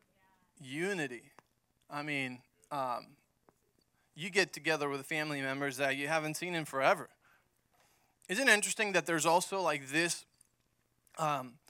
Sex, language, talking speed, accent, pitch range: male, English, 130 wpm, American, 140-180 Hz